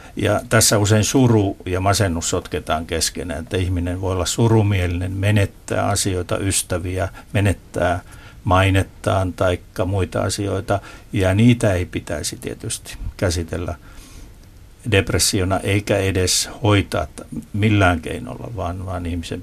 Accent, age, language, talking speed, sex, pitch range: native, 60-79, Finnish, 110 wpm, male, 90-110 Hz